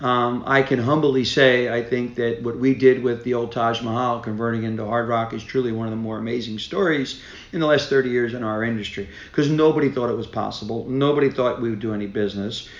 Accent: American